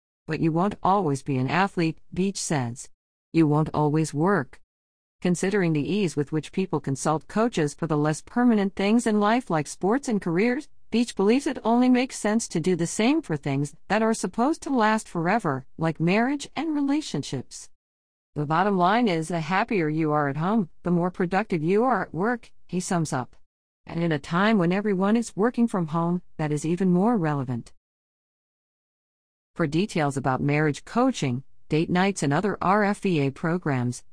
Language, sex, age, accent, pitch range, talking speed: English, female, 50-69, American, 145-210 Hz, 175 wpm